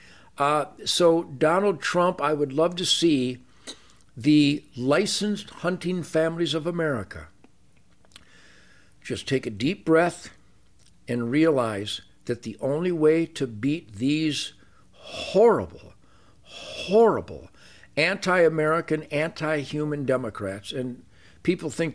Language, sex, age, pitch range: English, male, 60-79, 115-160 Hz